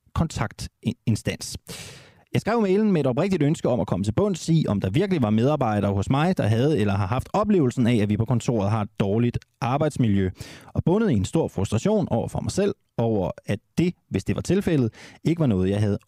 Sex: male